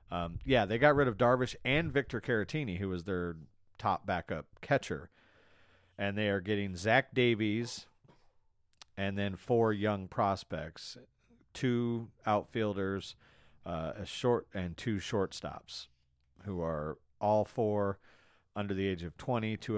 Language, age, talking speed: English, 40-59, 135 wpm